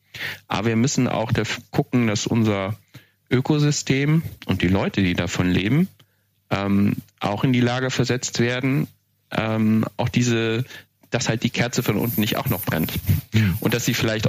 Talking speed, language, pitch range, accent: 165 wpm, German, 100-125 Hz, German